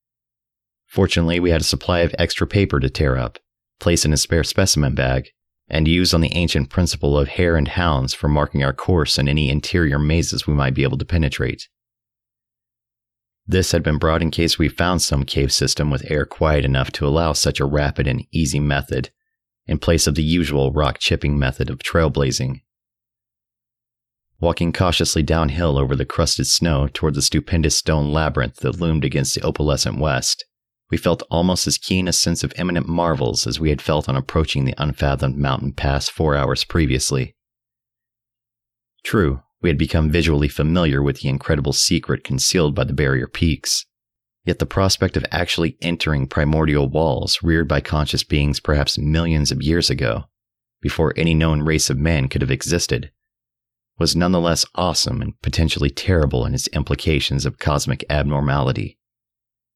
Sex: male